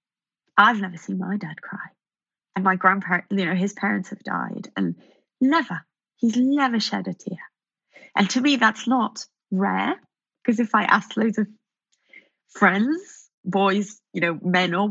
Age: 30-49